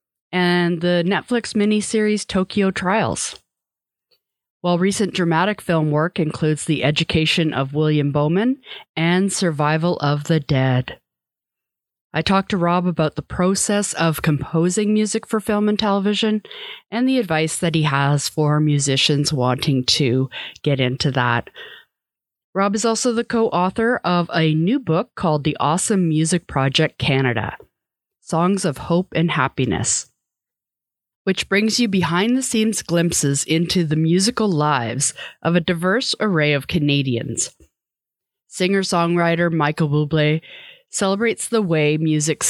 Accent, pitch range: American, 150-195 Hz